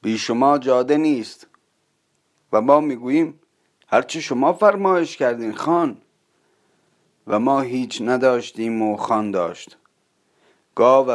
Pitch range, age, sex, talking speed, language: 115-140 Hz, 30-49, male, 110 wpm, Persian